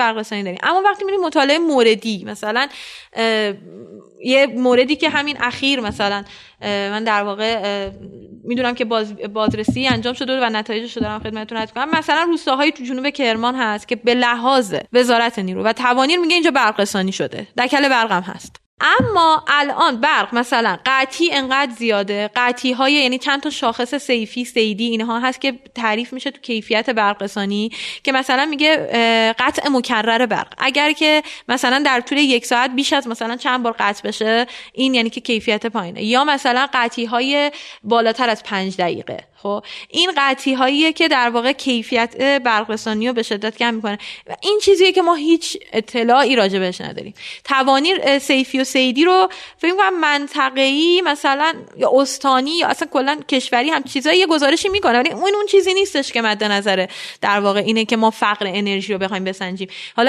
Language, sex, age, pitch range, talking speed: Persian, female, 10-29, 225-280 Hz, 165 wpm